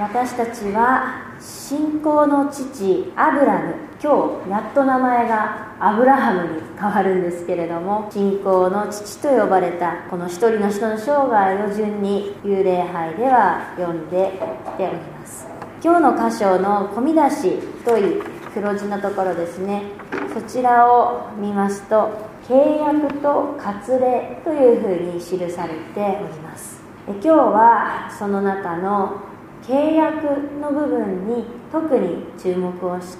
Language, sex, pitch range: Japanese, female, 185-260 Hz